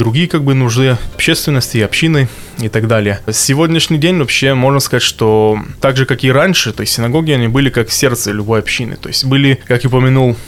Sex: male